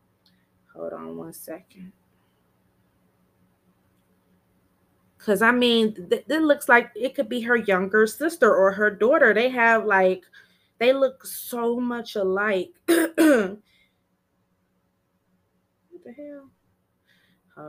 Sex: female